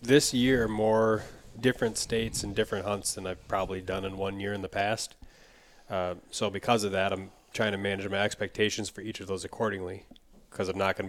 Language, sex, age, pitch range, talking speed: English, male, 30-49, 95-110 Hz, 205 wpm